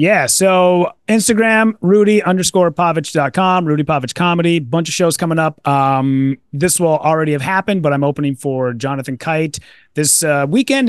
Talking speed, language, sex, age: 160 wpm, English, male, 30-49